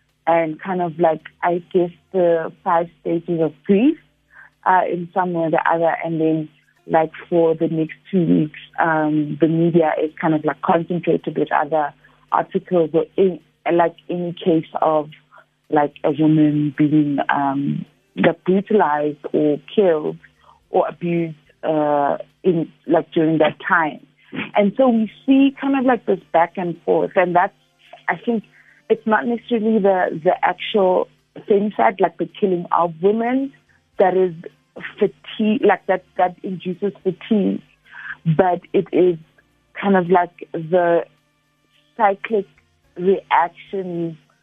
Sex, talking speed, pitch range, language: female, 140 wpm, 160-190 Hz, English